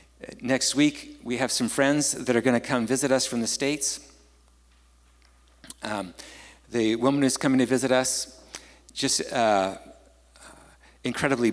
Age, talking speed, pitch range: 50-69, 140 wpm, 90-130 Hz